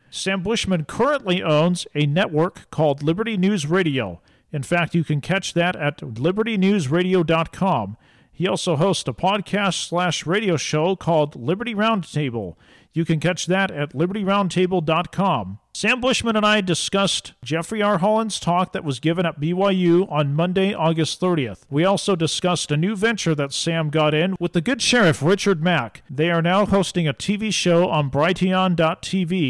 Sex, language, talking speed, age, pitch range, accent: male, English, 160 wpm, 40-59, 150-190 Hz, American